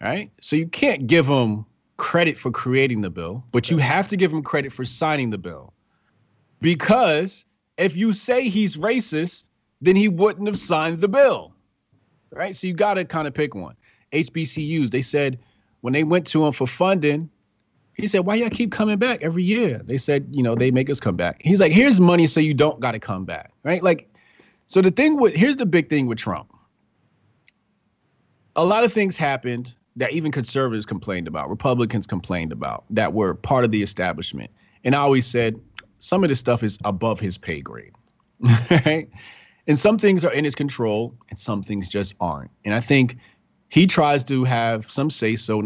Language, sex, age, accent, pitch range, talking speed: English, male, 30-49, American, 110-170 Hz, 195 wpm